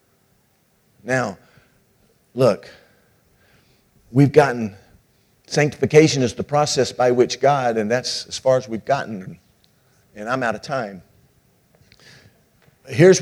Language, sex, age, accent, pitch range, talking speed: English, male, 50-69, American, 110-150 Hz, 110 wpm